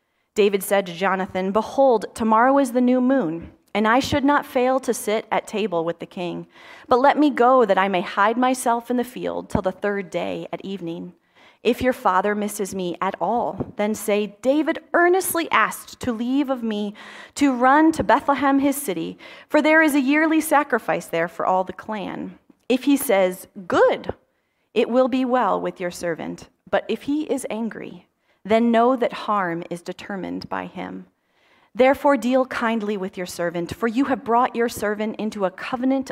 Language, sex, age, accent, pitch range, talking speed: English, female, 30-49, American, 195-265 Hz, 185 wpm